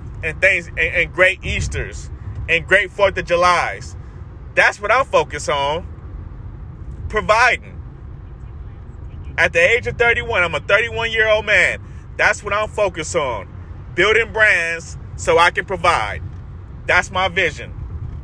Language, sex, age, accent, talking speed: English, male, 30-49, American, 140 wpm